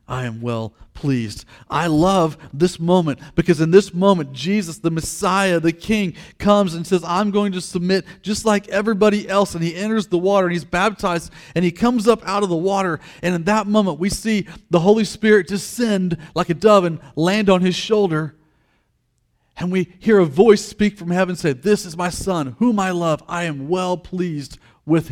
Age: 40-59